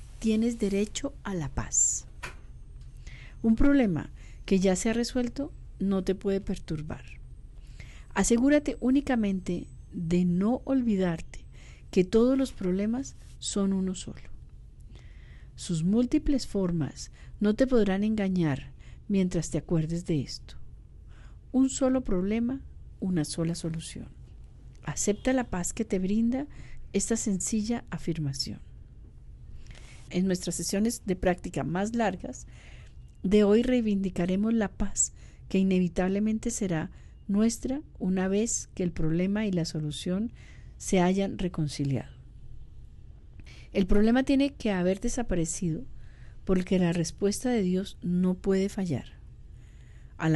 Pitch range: 170-220 Hz